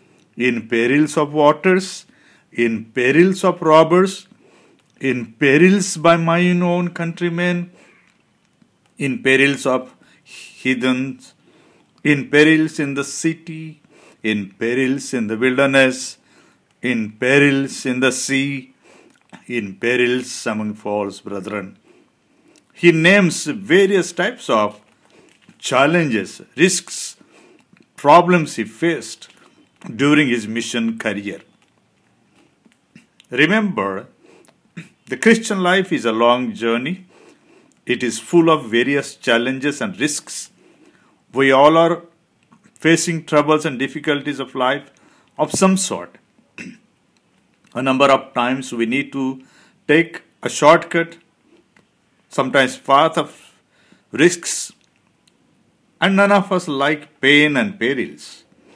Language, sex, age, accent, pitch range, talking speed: English, male, 50-69, Indian, 125-175 Hz, 105 wpm